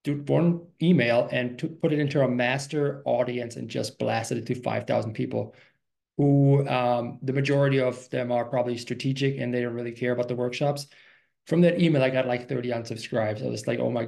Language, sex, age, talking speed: English, male, 20-39, 205 wpm